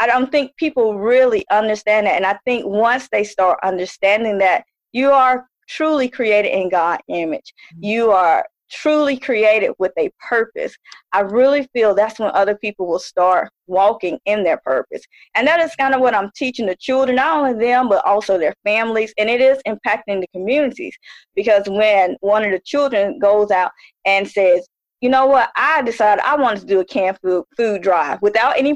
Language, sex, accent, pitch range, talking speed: English, female, American, 200-260 Hz, 190 wpm